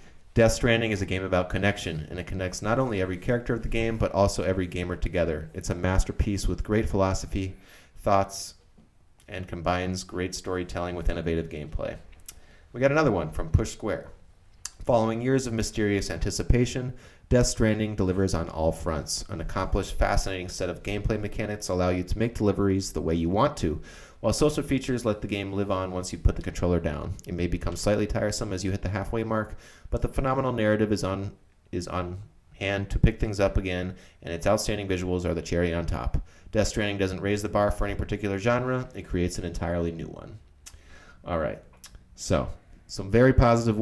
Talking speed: 195 wpm